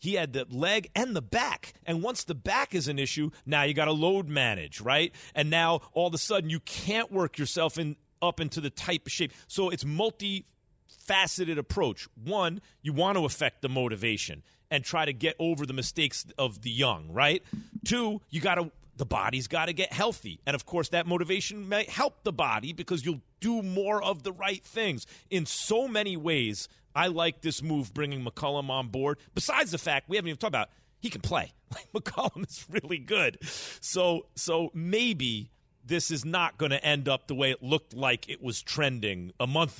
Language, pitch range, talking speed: English, 130-175 Hz, 205 wpm